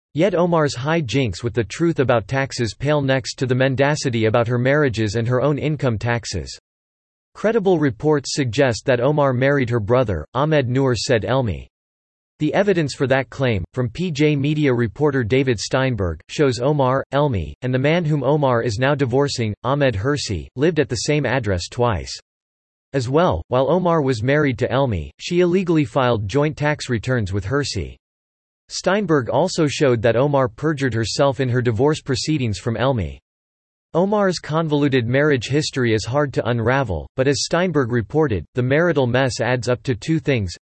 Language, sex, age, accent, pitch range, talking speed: English, male, 40-59, American, 115-145 Hz, 165 wpm